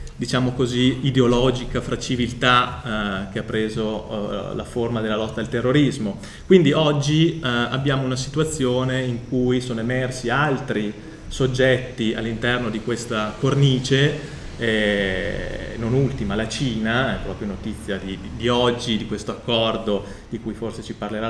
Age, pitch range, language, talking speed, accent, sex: 30-49, 110-135 Hz, Italian, 145 wpm, native, male